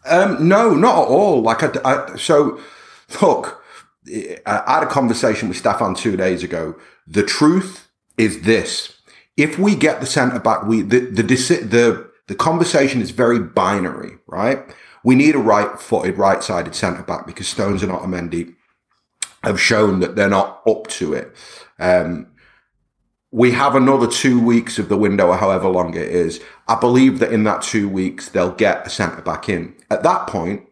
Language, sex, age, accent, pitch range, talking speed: English, male, 40-59, British, 100-130 Hz, 175 wpm